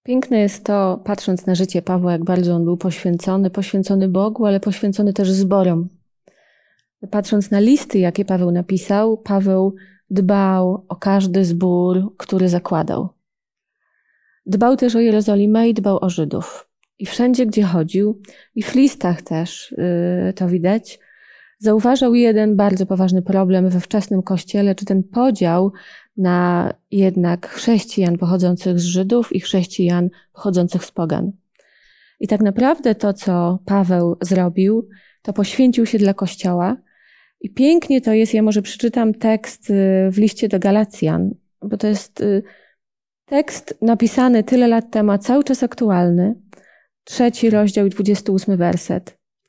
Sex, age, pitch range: female, 30-49, 185-220 Hz